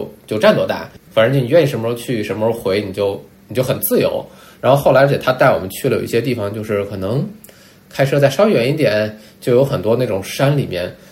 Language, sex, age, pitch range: Chinese, male, 20-39, 105-135 Hz